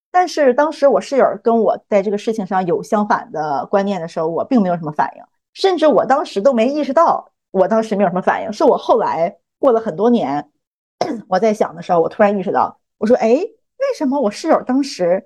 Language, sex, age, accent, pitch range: Chinese, female, 20-39, native, 195-255 Hz